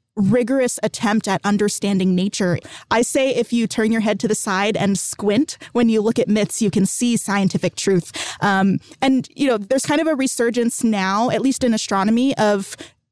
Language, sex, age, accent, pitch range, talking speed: English, female, 20-39, American, 195-235 Hz, 190 wpm